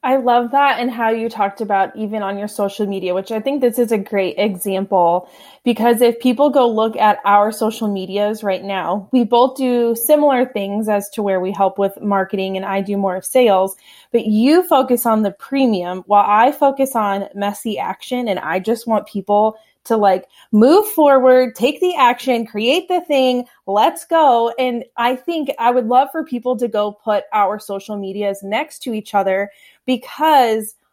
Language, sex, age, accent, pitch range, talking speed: English, female, 20-39, American, 205-255 Hz, 190 wpm